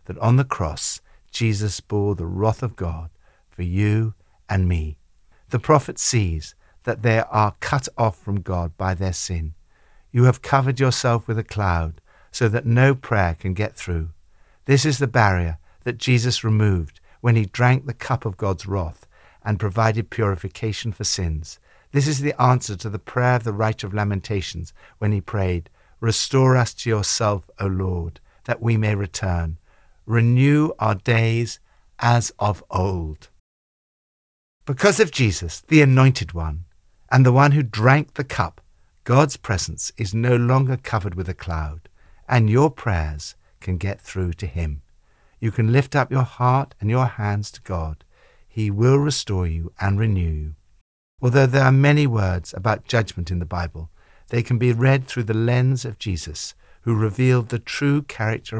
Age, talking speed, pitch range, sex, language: 60-79, 165 wpm, 90-125 Hz, male, English